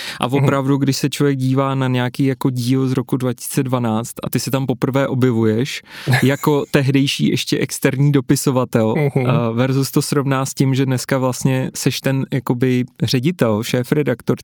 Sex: male